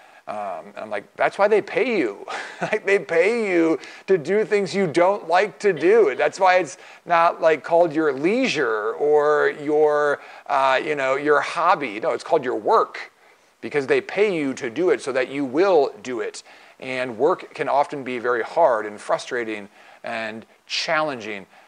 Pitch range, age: 135-210 Hz, 40-59